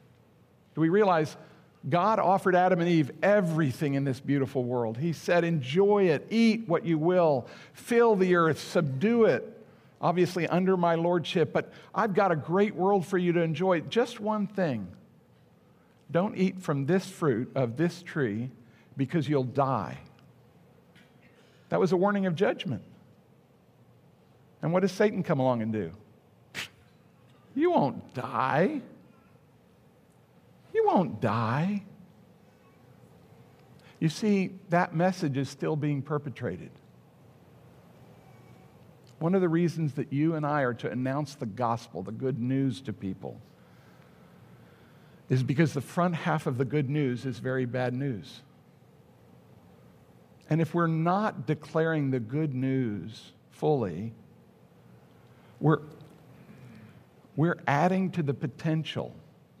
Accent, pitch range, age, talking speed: American, 130-180 Hz, 50-69, 130 wpm